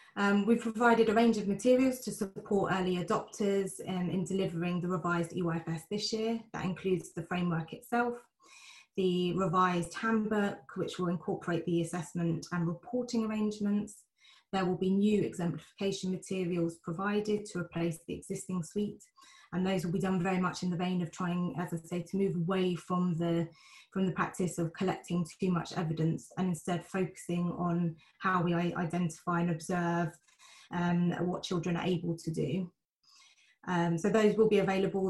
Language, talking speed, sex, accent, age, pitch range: English, 165 wpm, female, British, 20-39, 170-195 Hz